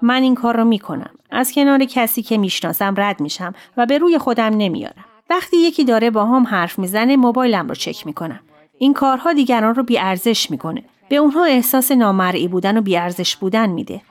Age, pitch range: 30-49, 190-265 Hz